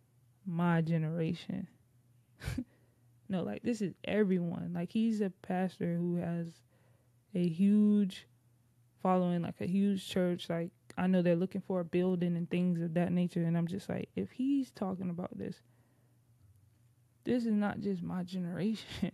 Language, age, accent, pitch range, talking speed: English, 20-39, American, 120-195 Hz, 150 wpm